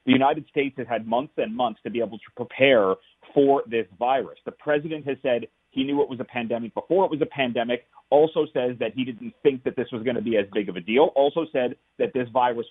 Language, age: English, 30-49